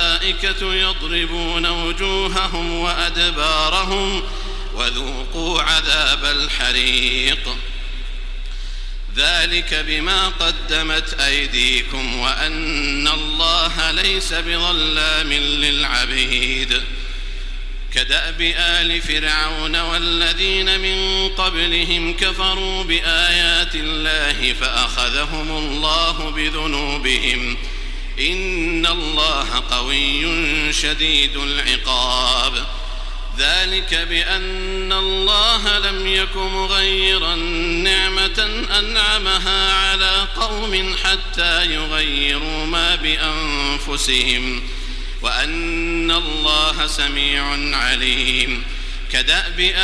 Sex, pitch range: male, 150-190 Hz